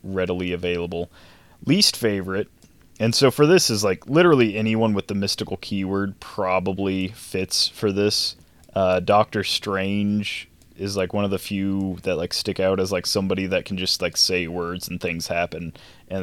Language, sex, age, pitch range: English, male, 20-39, 90-105 Hz